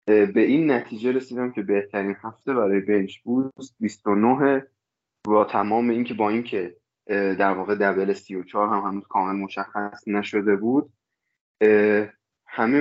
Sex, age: male, 20-39